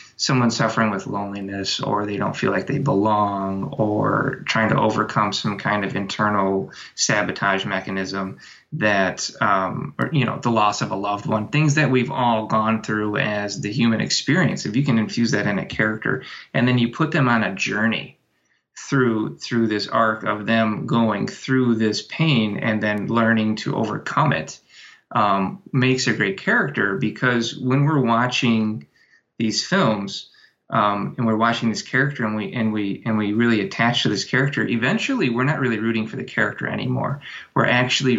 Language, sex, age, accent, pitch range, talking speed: English, male, 20-39, American, 105-125 Hz, 180 wpm